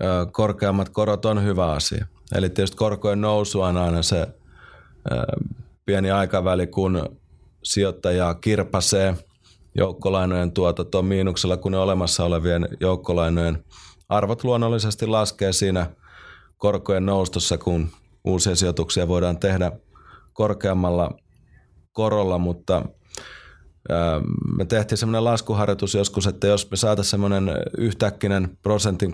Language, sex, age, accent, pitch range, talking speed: Finnish, male, 30-49, native, 90-105 Hz, 105 wpm